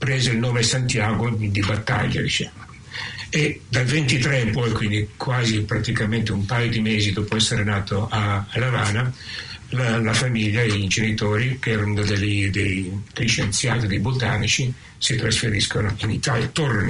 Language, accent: Italian, native